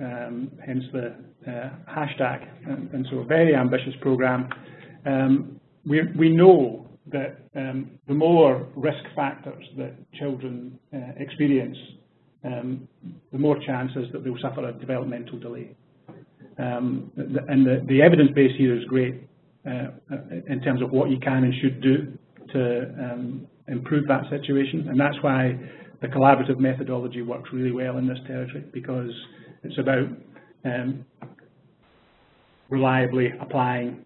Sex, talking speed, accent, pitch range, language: male, 135 wpm, British, 130-145 Hz, English